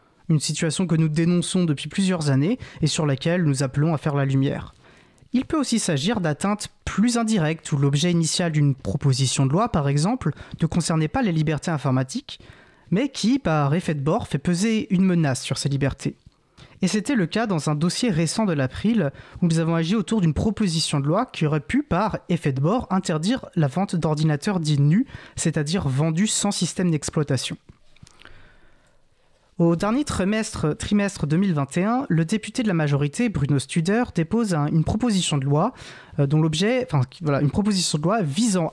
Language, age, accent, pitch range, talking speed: French, 20-39, French, 150-190 Hz, 165 wpm